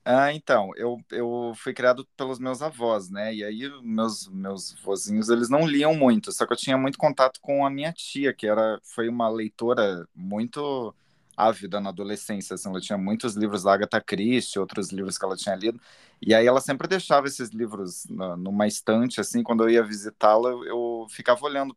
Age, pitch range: 20-39, 110-140 Hz